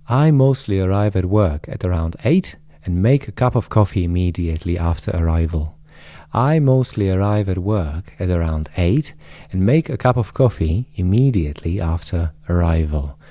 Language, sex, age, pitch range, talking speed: Slovak, male, 30-49, 85-115 Hz, 155 wpm